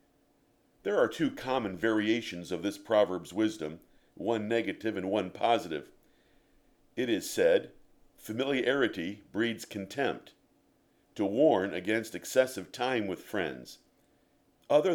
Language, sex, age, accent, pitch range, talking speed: English, male, 50-69, American, 105-135 Hz, 110 wpm